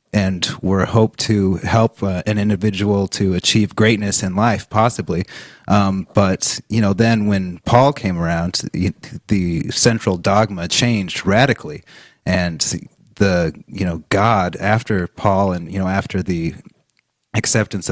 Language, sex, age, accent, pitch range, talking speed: English, male, 30-49, American, 90-110 Hz, 135 wpm